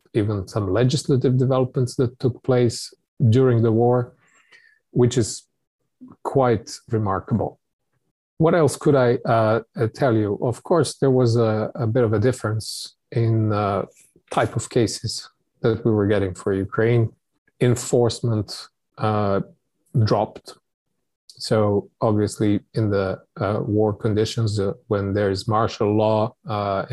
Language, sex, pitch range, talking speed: English, male, 105-125 Hz, 130 wpm